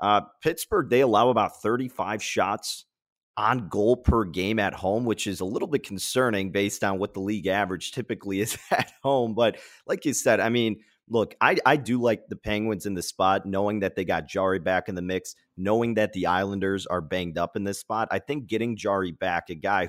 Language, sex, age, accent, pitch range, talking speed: English, male, 30-49, American, 95-115 Hz, 215 wpm